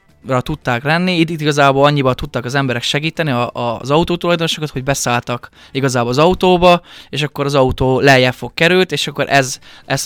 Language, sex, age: Hungarian, male, 20-39